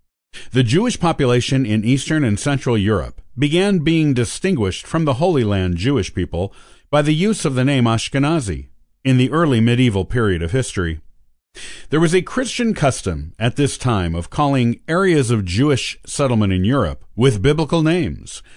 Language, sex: English, male